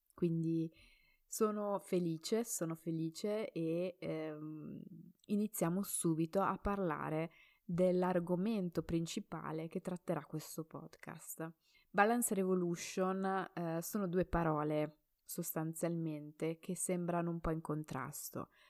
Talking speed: 95 wpm